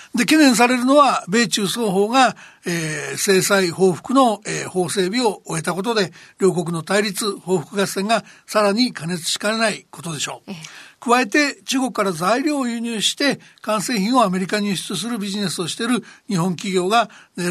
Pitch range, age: 185-230 Hz, 60-79